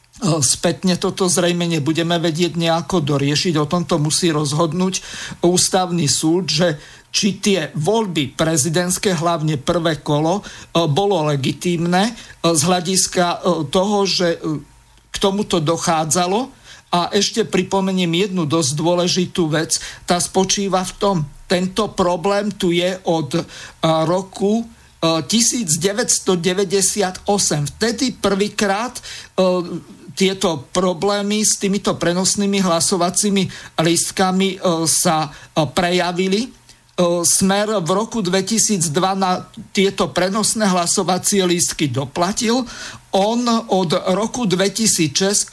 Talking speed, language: 95 wpm, Slovak